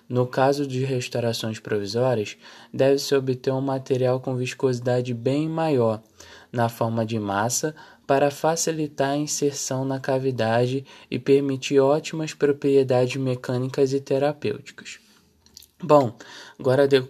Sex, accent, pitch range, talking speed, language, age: male, Brazilian, 120-140 Hz, 110 wpm, Portuguese, 10-29